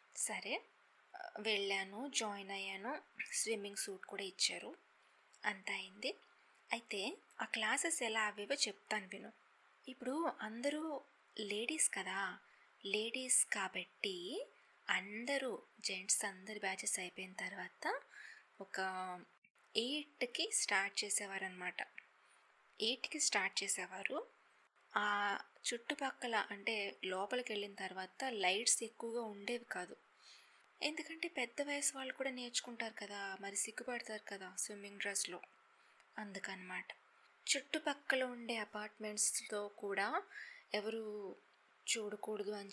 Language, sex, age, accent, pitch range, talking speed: Telugu, female, 20-39, native, 200-260 Hz, 95 wpm